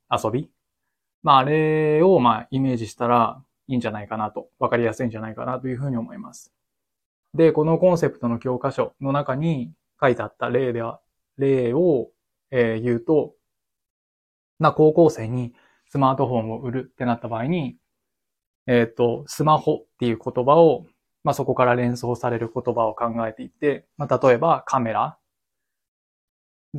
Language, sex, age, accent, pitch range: Japanese, male, 20-39, native, 115-140 Hz